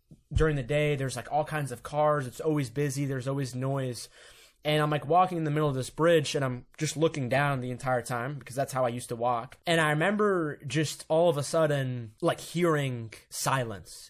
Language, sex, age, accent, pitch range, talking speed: English, male, 20-39, American, 135-165 Hz, 215 wpm